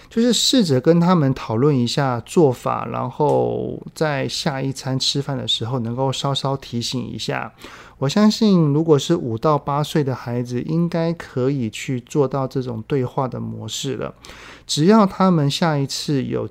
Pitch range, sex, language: 120-150 Hz, male, Chinese